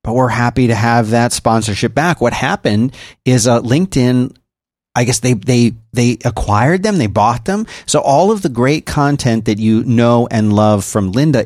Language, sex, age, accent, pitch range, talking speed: English, male, 30-49, American, 110-135 Hz, 190 wpm